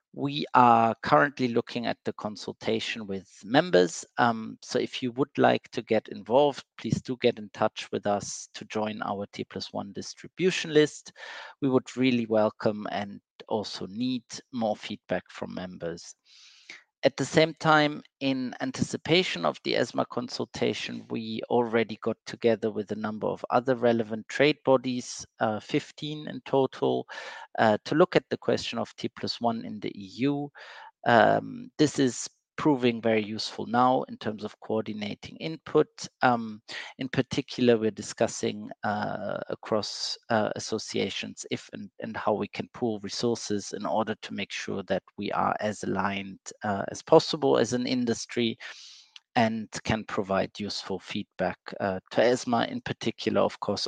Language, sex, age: English, male, 50-69